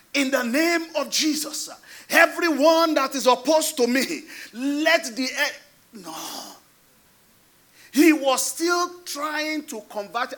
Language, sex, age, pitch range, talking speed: English, male, 40-59, 215-300 Hz, 115 wpm